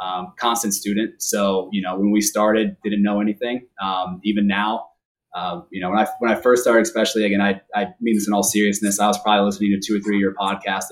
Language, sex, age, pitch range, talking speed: English, male, 20-39, 95-110 Hz, 235 wpm